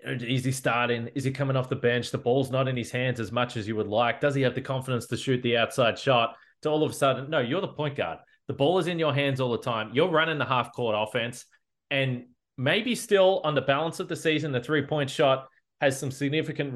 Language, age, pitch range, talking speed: English, 20-39, 120-140 Hz, 250 wpm